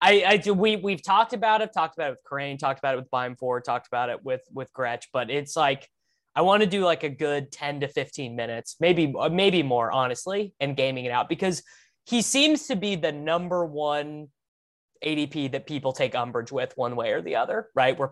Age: 20-39